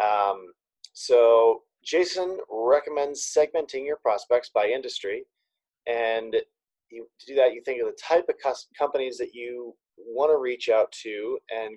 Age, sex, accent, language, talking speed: 30-49, male, American, English, 155 wpm